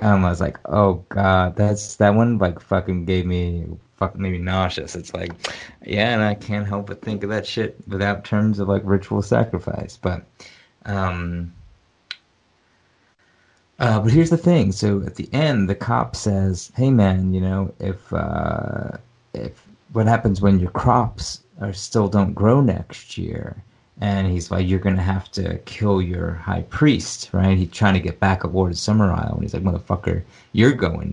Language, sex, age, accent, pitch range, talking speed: English, male, 30-49, American, 90-105 Hz, 185 wpm